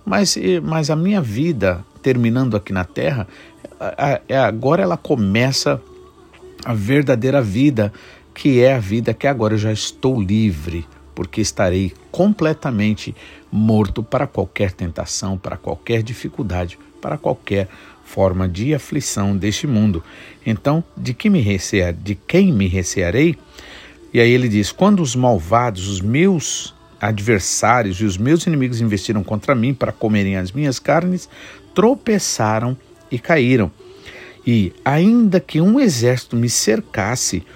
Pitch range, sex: 100-145 Hz, male